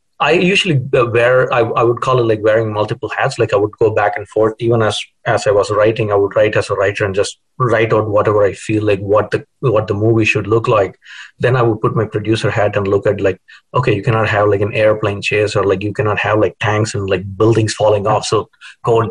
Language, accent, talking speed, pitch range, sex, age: English, Indian, 255 wpm, 100-115 Hz, male, 30-49